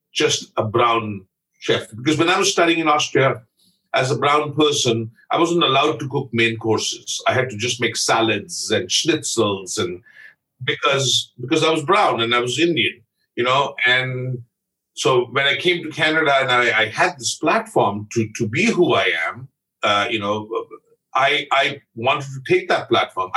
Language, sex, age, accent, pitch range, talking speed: English, male, 50-69, Indian, 115-155 Hz, 180 wpm